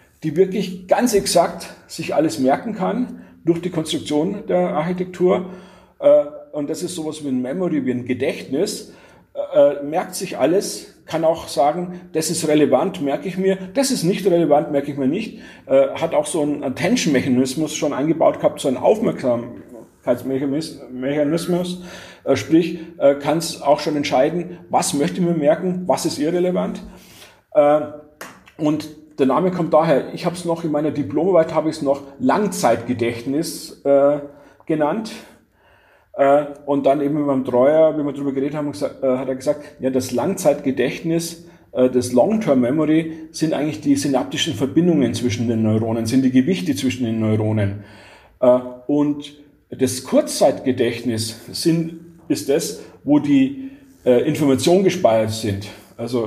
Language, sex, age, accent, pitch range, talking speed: German, male, 50-69, German, 130-175 Hz, 145 wpm